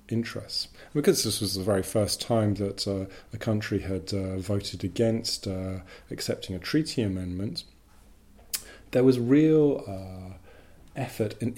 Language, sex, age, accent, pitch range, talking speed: English, male, 40-59, British, 95-115 Hz, 140 wpm